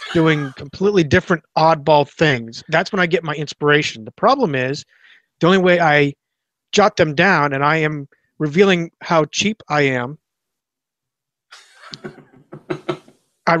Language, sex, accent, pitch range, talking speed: English, male, American, 135-170 Hz, 130 wpm